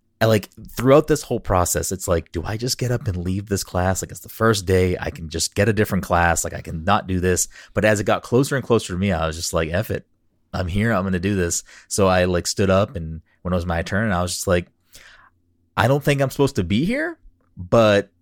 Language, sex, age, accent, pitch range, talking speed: English, male, 20-39, American, 85-105 Hz, 265 wpm